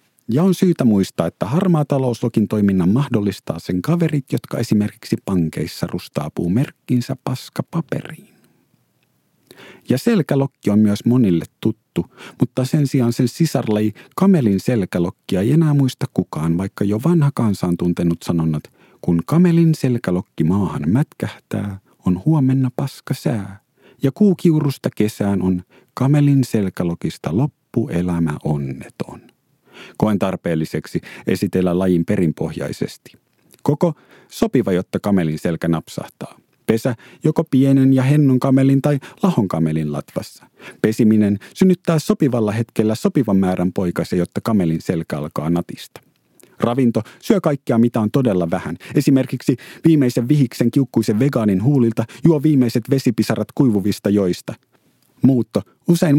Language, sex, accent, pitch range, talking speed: Finnish, male, native, 100-145 Hz, 115 wpm